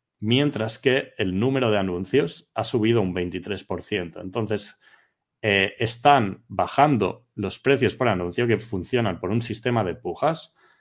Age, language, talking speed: 30-49, Spanish, 140 wpm